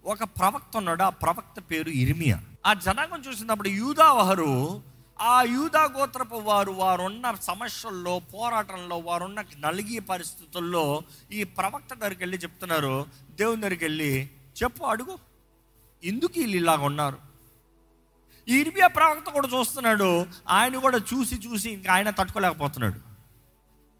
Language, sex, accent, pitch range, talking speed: Telugu, male, native, 160-260 Hz, 115 wpm